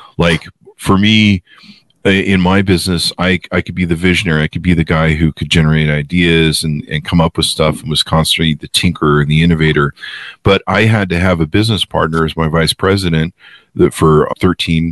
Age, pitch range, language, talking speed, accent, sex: 40-59, 80-90 Hz, English, 200 wpm, American, male